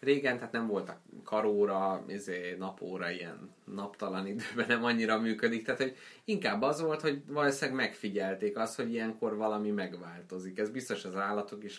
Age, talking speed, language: 20-39, 160 wpm, Hungarian